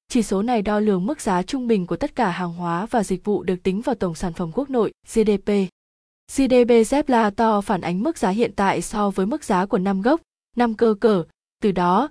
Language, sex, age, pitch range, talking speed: Vietnamese, female, 20-39, 195-230 Hz, 230 wpm